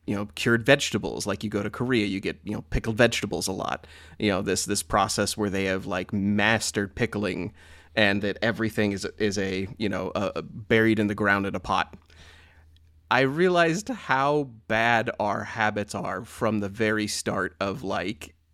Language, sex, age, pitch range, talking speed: English, male, 30-49, 95-115 Hz, 190 wpm